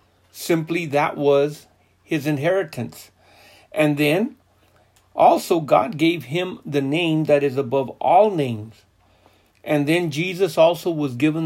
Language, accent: English, American